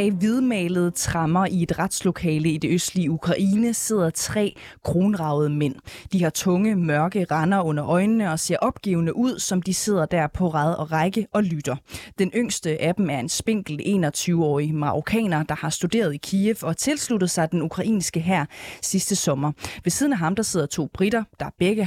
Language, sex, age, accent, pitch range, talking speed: Danish, female, 20-39, native, 160-205 Hz, 180 wpm